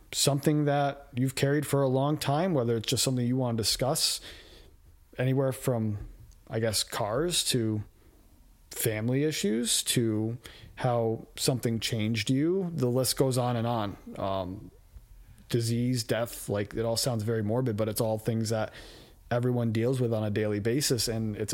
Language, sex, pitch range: English, male, 110-130 Hz